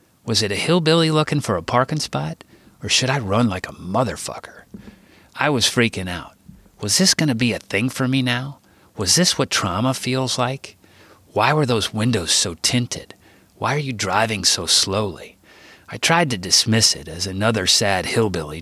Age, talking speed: 40-59, 185 wpm